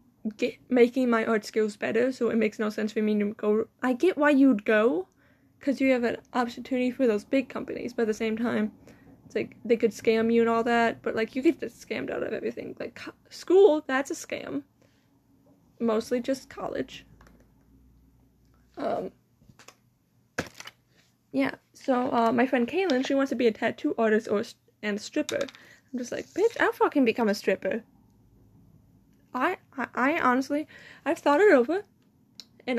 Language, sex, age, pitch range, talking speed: English, female, 10-29, 225-285 Hz, 175 wpm